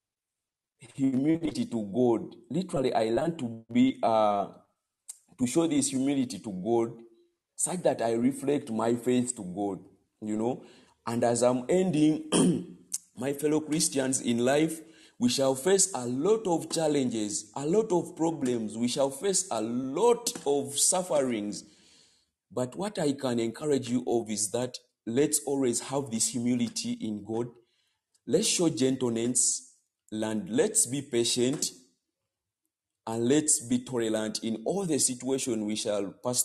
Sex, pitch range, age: male, 115-150 Hz, 50-69